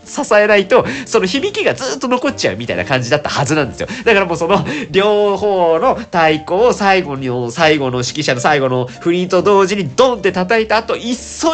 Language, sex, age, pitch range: Japanese, male, 40-59, 130-200 Hz